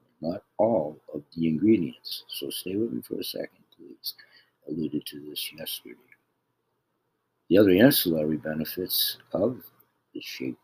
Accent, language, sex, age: American, Chinese, male, 60-79